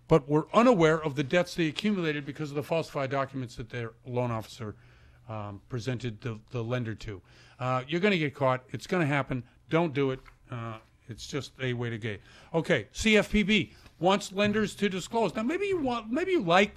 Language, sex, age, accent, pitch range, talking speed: English, male, 50-69, American, 130-180 Hz, 195 wpm